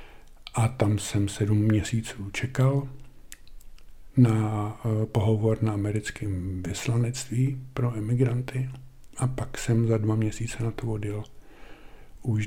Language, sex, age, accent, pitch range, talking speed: Czech, male, 50-69, native, 105-130 Hz, 110 wpm